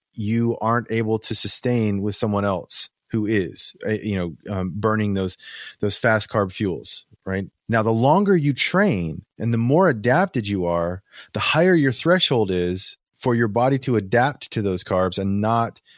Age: 30-49